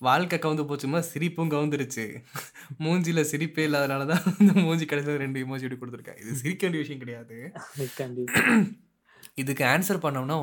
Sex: male